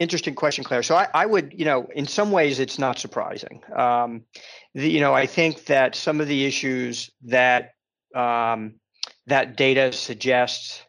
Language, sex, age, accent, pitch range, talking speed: English, male, 40-59, American, 120-140 Hz, 170 wpm